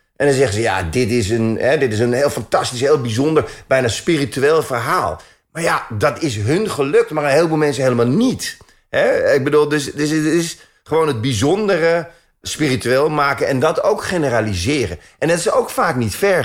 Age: 30-49